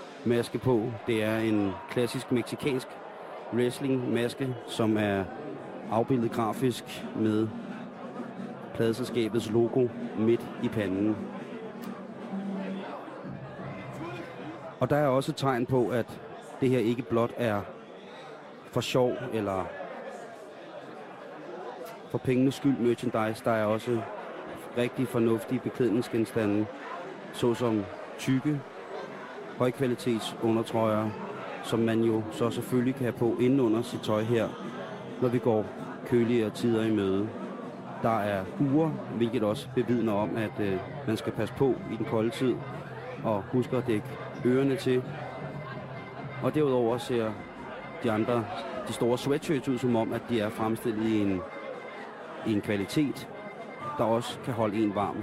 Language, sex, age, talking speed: Danish, male, 30-49, 125 wpm